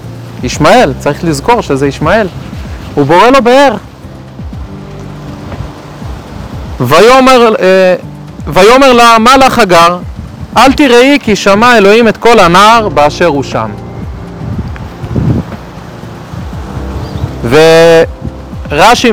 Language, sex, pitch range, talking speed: Hebrew, male, 175-260 Hz, 80 wpm